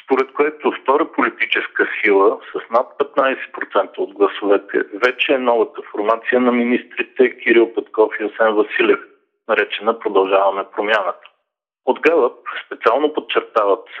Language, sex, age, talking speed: Bulgarian, male, 50-69, 120 wpm